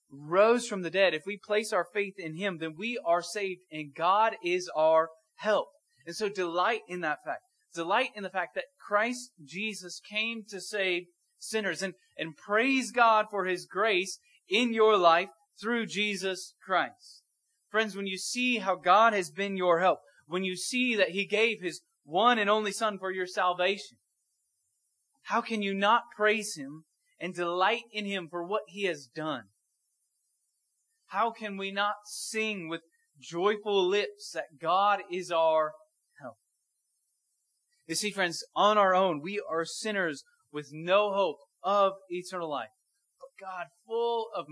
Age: 30-49